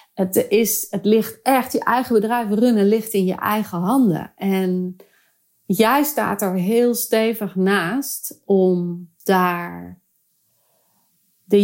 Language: Dutch